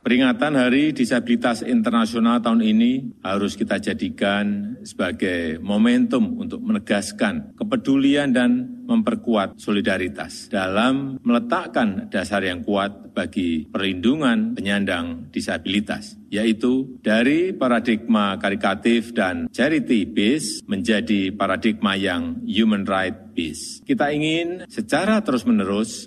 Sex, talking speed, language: male, 95 wpm, Indonesian